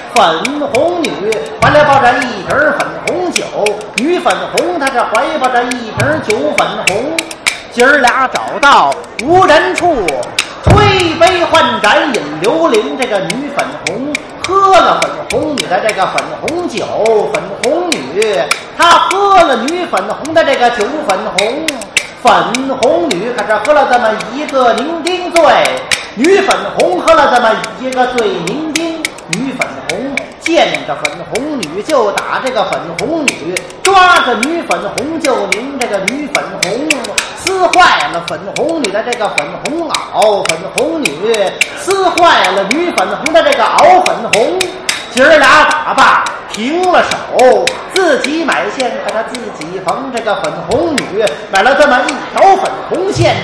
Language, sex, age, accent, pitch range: Chinese, male, 40-59, native, 245-340 Hz